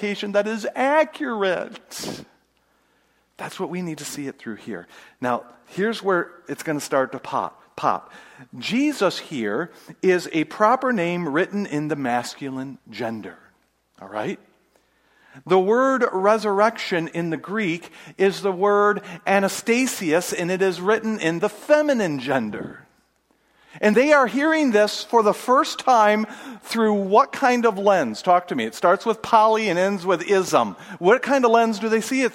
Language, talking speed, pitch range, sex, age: English, 160 wpm, 185-250 Hz, male, 50-69